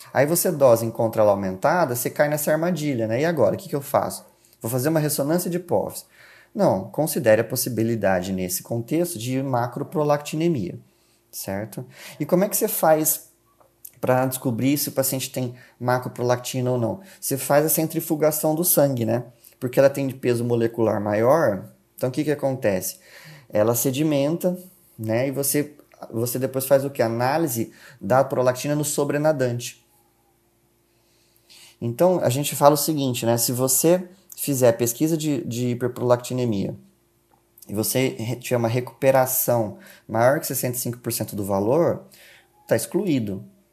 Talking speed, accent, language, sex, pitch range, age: 145 wpm, Brazilian, Portuguese, male, 115-150 Hz, 20-39